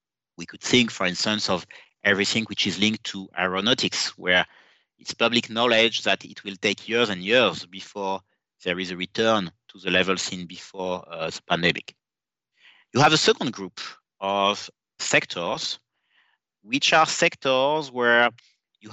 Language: English